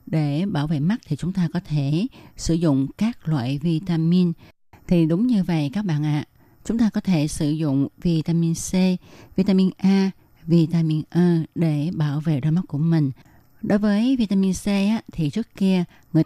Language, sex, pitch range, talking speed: Vietnamese, female, 155-195 Hz, 185 wpm